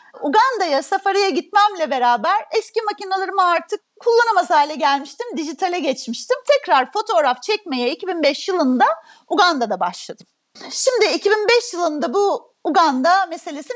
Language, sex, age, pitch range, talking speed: Turkish, female, 40-59, 285-405 Hz, 110 wpm